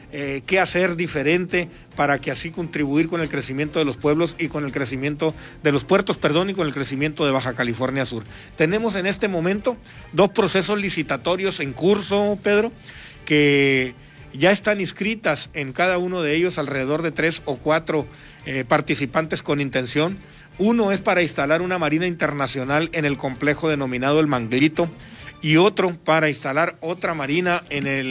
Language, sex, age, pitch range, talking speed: Spanish, male, 40-59, 140-180 Hz, 165 wpm